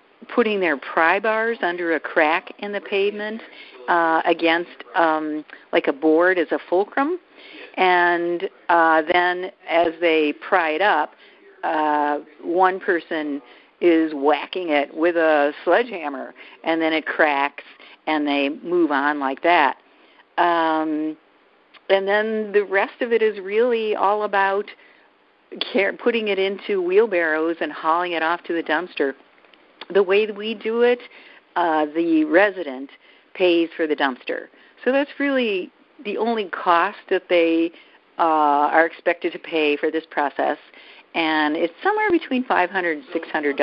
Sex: female